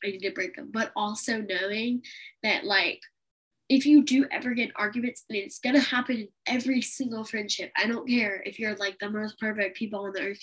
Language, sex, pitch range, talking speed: English, female, 205-260 Hz, 235 wpm